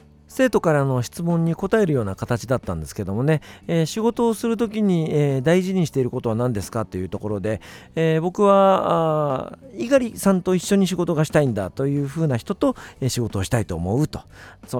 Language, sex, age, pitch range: Japanese, male, 40-59, 115-185 Hz